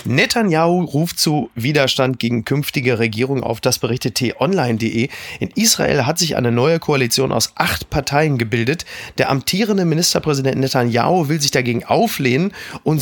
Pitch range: 120-160 Hz